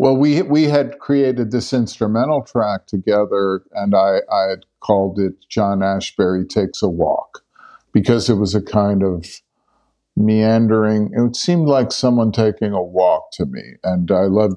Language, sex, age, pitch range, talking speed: English, male, 50-69, 95-120 Hz, 155 wpm